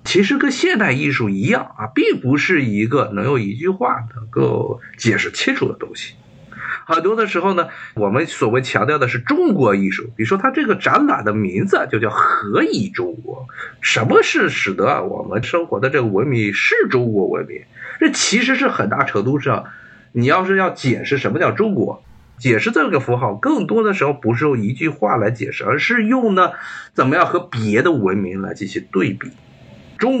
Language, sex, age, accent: Chinese, male, 50-69, native